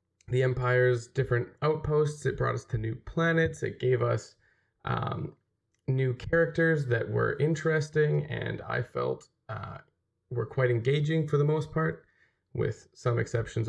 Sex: male